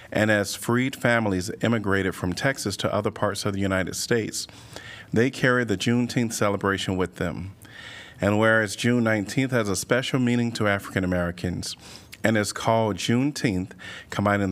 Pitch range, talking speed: 95-115 Hz, 155 wpm